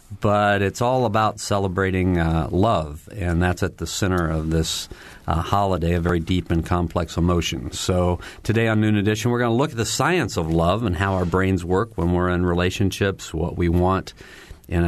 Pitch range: 90-105 Hz